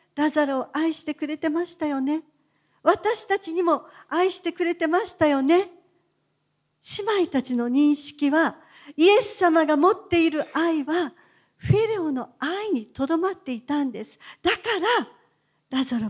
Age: 50-69